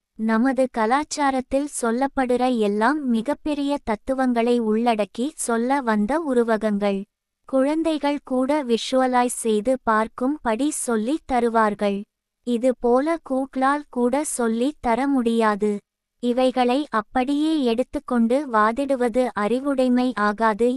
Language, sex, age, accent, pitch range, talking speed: Tamil, female, 20-39, native, 225-270 Hz, 90 wpm